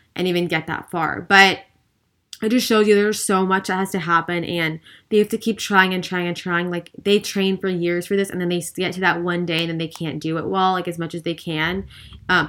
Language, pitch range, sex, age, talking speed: English, 170-195 Hz, female, 20-39, 270 wpm